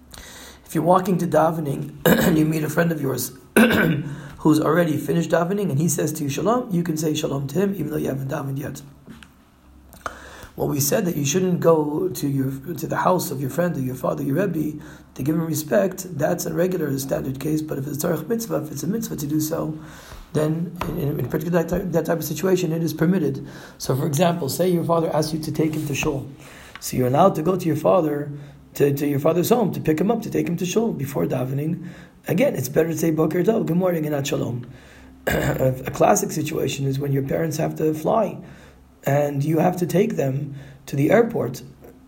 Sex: male